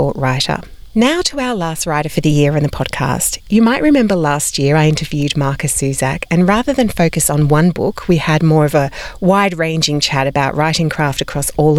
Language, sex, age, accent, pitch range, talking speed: English, female, 40-59, Australian, 145-195 Hz, 205 wpm